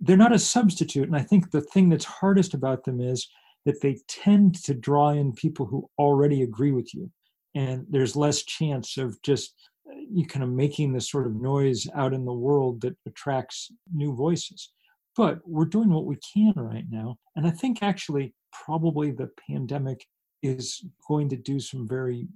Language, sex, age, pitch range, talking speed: English, male, 50-69, 130-170 Hz, 185 wpm